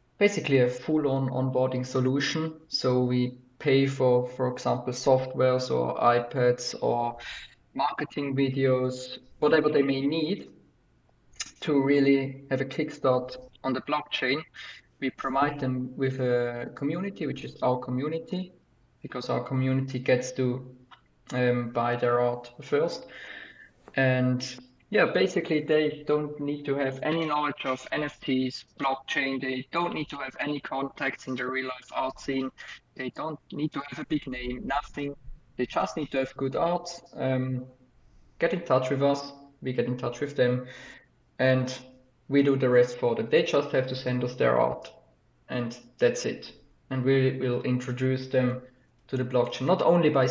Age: 20-39